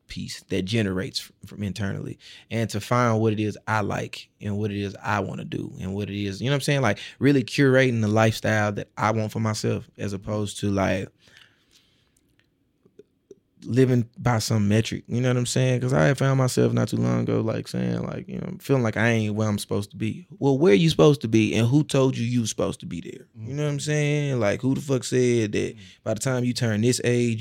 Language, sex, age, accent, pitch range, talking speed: English, male, 20-39, American, 105-125 Hz, 245 wpm